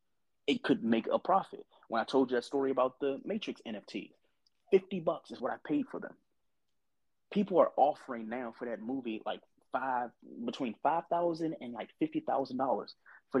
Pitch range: 115-155 Hz